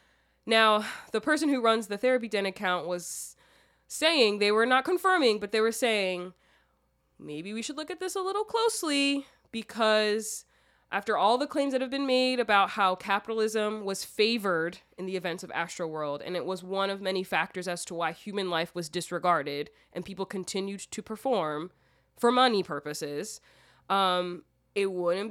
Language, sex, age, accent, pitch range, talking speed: English, female, 20-39, American, 175-220 Hz, 175 wpm